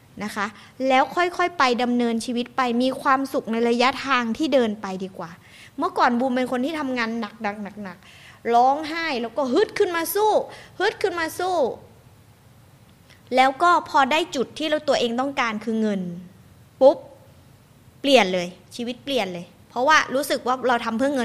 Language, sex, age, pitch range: Thai, female, 20-39, 205-280 Hz